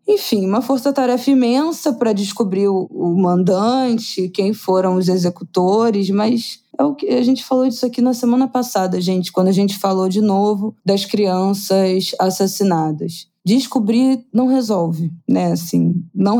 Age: 20-39